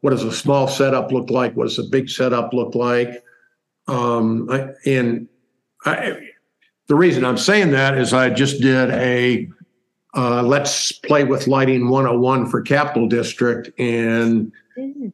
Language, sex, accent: English, male, American